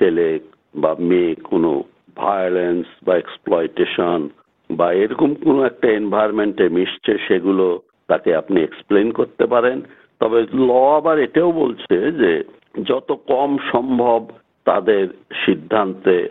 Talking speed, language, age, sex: 50 wpm, Bengali, 60-79, male